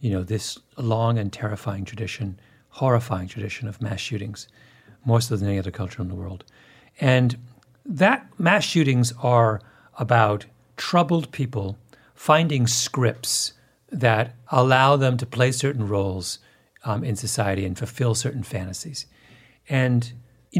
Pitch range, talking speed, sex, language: 110-145 Hz, 135 wpm, male, English